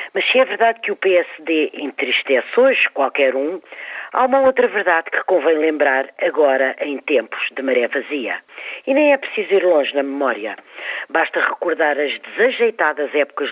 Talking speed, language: 165 wpm, Portuguese